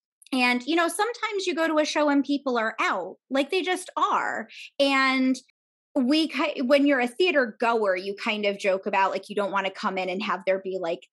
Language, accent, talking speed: English, American, 220 wpm